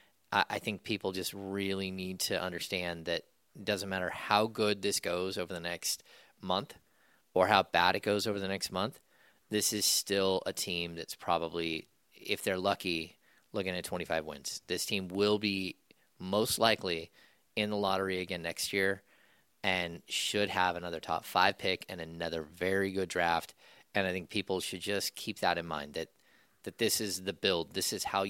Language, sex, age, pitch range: English, male, 30-49, 85-100 Hz